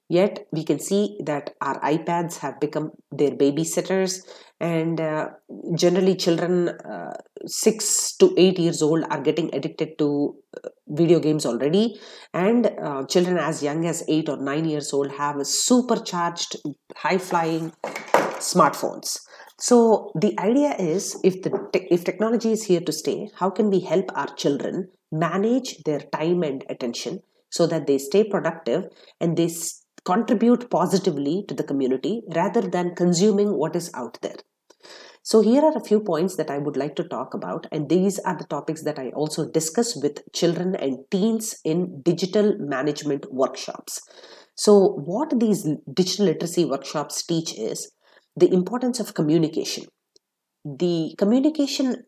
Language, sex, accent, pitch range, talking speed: English, female, Indian, 155-205 Hz, 150 wpm